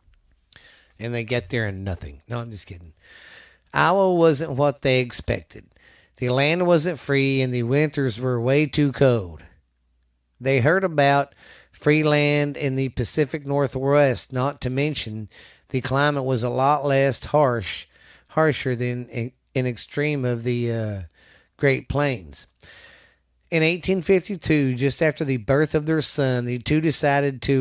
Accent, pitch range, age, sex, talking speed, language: American, 120-145 Hz, 40-59, male, 145 wpm, English